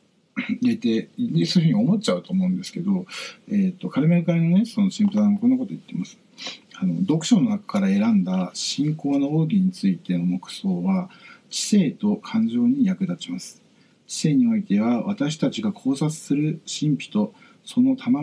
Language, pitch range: Japanese, 185-235 Hz